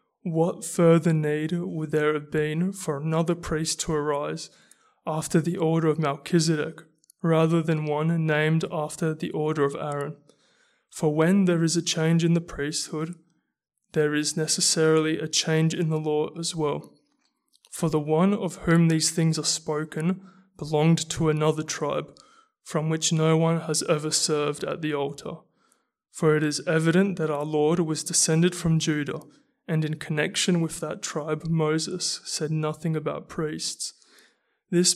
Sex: male